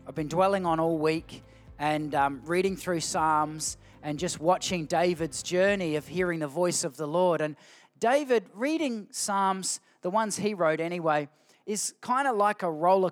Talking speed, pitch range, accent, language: 175 wpm, 155-190 Hz, Australian, English